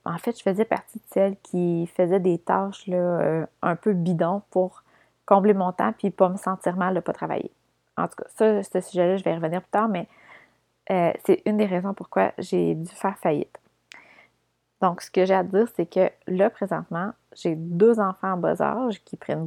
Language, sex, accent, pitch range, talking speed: French, female, Canadian, 180-215 Hz, 215 wpm